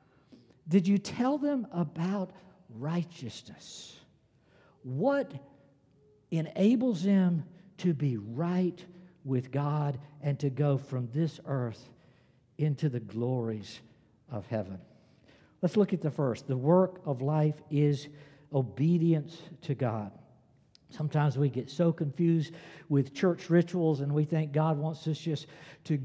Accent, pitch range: American, 140-175 Hz